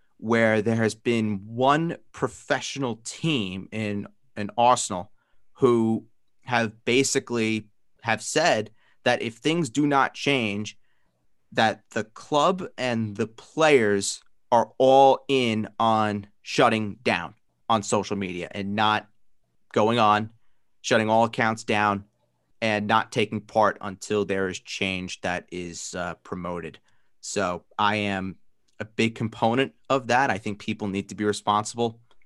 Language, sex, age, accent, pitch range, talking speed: English, male, 30-49, American, 105-135 Hz, 130 wpm